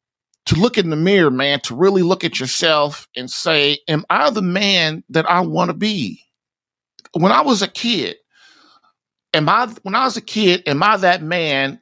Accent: American